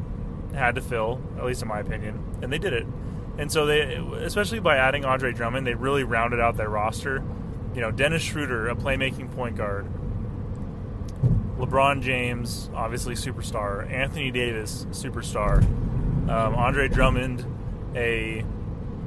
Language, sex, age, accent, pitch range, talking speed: English, male, 20-39, American, 105-130 Hz, 140 wpm